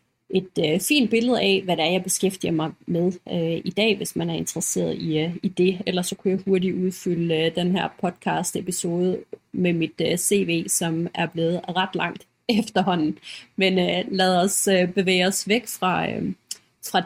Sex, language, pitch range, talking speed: female, Danish, 180-225 Hz, 165 wpm